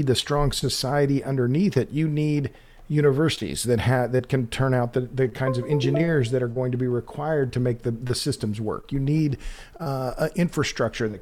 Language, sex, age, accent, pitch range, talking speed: English, male, 50-69, American, 125-155 Hz, 195 wpm